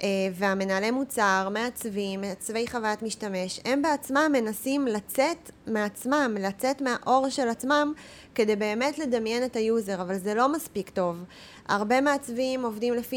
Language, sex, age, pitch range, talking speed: Hebrew, female, 20-39, 205-260 Hz, 130 wpm